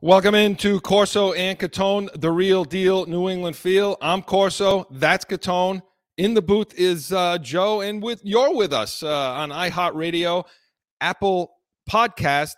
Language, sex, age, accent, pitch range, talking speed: English, male, 40-59, American, 140-180 Hz, 150 wpm